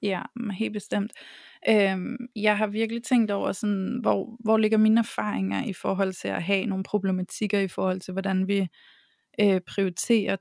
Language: Danish